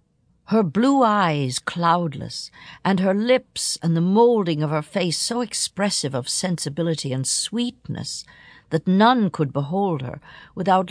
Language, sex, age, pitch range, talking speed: English, female, 60-79, 130-185 Hz, 140 wpm